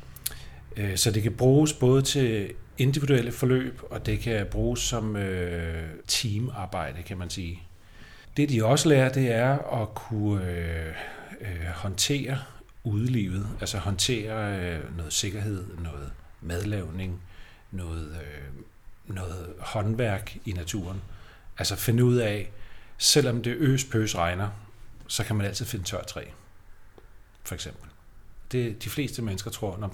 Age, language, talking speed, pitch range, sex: 40-59, Danish, 120 wpm, 90-115 Hz, male